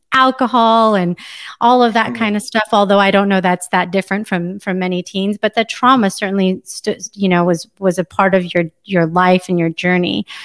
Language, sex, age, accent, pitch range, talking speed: English, female, 30-49, American, 185-240 Hz, 205 wpm